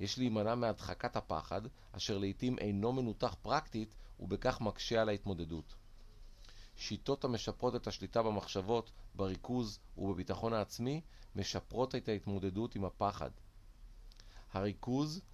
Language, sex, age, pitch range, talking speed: Hebrew, male, 40-59, 95-115 Hz, 105 wpm